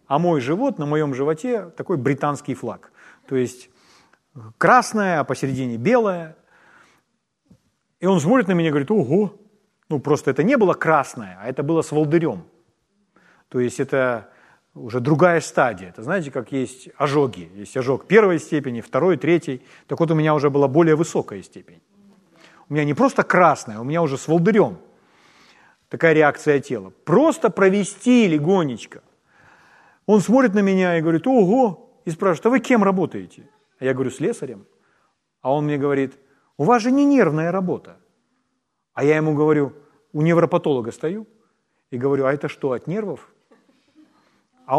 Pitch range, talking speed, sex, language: 140-200 Hz, 160 wpm, male, Ukrainian